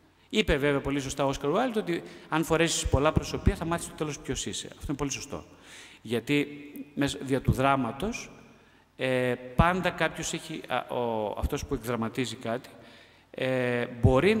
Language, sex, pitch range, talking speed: Greek, male, 110-145 Hz, 160 wpm